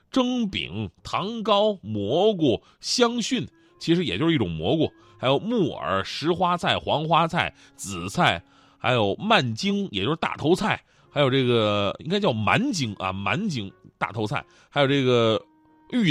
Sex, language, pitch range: male, Chinese, 115-190 Hz